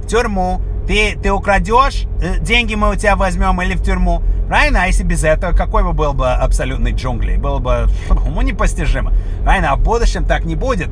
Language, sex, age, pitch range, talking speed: English, male, 30-49, 145-205 Hz, 185 wpm